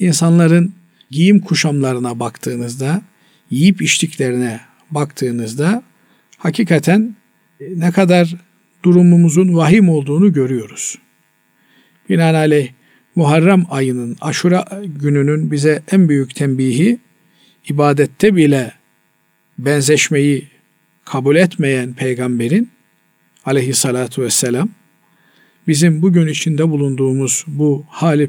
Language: Turkish